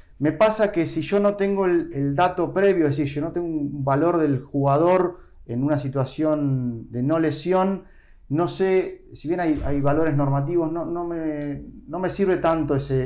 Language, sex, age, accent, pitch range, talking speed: Spanish, male, 20-39, Argentinian, 120-170 Hz, 195 wpm